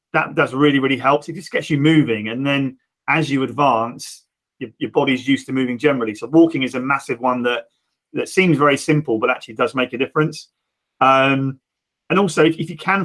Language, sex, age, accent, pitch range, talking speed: English, male, 30-49, British, 125-150 Hz, 210 wpm